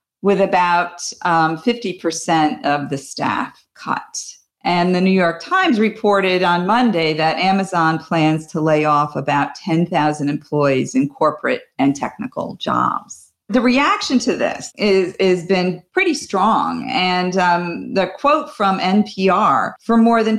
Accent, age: American, 50-69